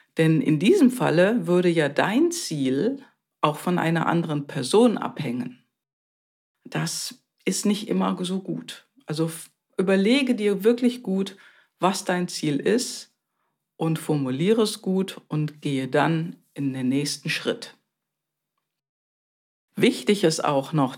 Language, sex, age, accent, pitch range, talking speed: German, female, 50-69, German, 150-210 Hz, 125 wpm